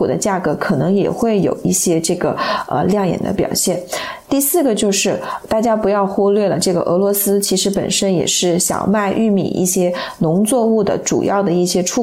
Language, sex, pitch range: Chinese, female, 185-225 Hz